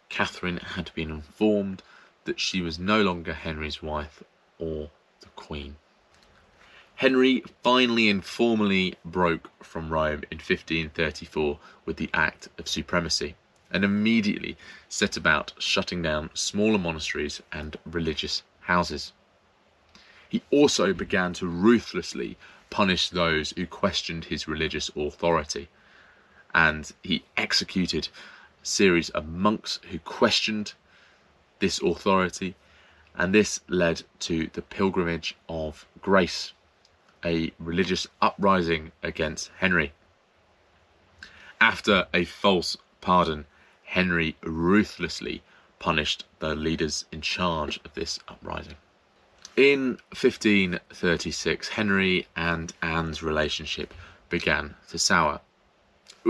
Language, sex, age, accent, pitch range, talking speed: English, male, 30-49, British, 80-95 Hz, 105 wpm